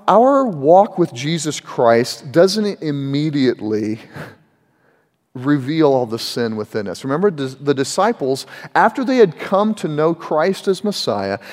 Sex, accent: male, American